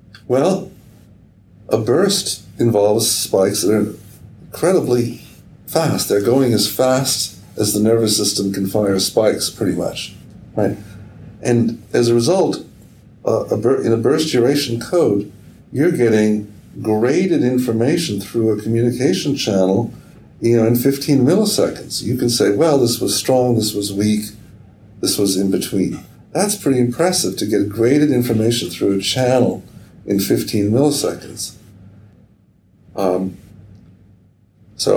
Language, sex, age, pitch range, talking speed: English, male, 60-79, 100-115 Hz, 130 wpm